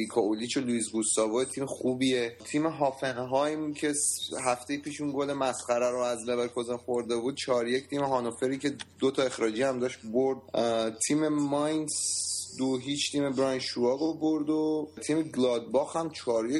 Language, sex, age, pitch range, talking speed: Persian, male, 30-49, 115-140 Hz, 150 wpm